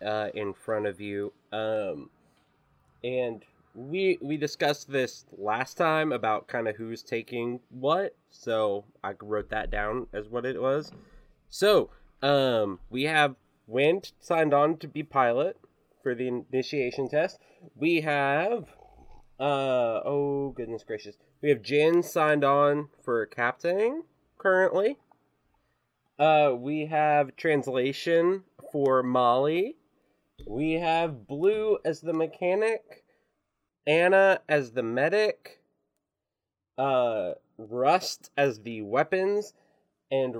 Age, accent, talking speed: 20-39, American, 115 wpm